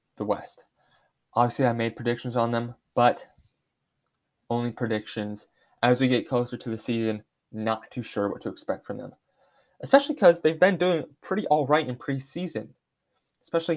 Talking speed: 155 wpm